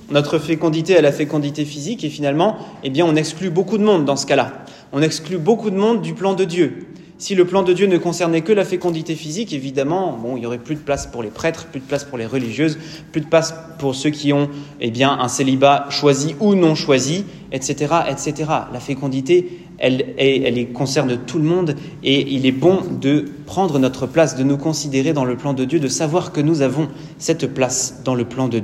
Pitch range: 135-175 Hz